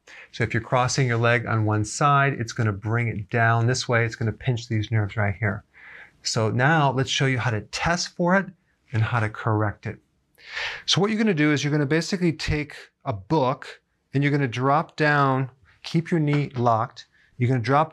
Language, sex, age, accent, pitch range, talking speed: English, male, 40-59, American, 115-145 Hz, 230 wpm